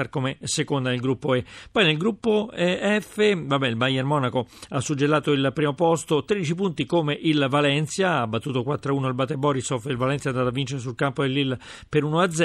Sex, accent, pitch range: male, native, 130-165 Hz